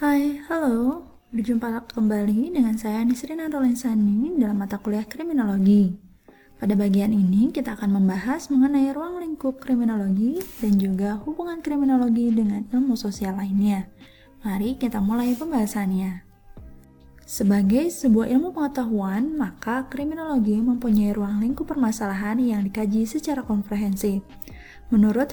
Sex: female